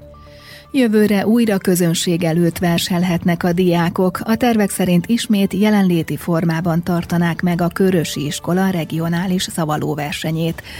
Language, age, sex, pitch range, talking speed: Hungarian, 30-49, female, 160-190 Hz, 110 wpm